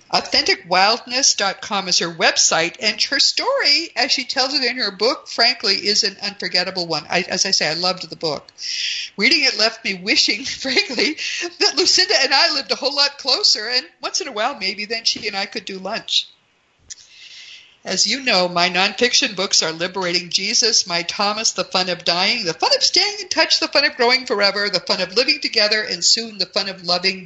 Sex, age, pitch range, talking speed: female, 50-69, 185-260 Hz, 200 wpm